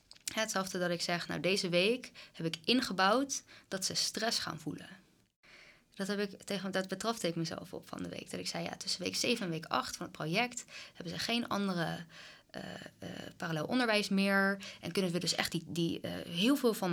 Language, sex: English, female